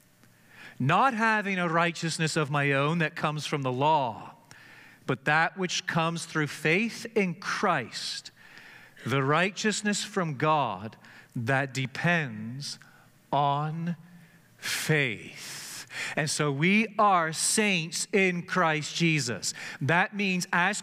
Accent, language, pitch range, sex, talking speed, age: American, English, 165-215 Hz, male, 110 wpm, 40-59